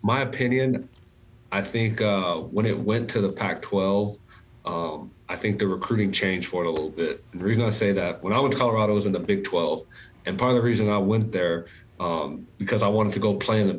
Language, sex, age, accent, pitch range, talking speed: English, male, 30-49, American, 100-110 Hz, 245 wpm